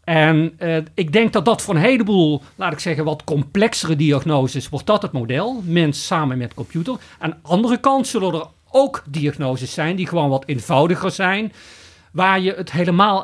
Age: 40-59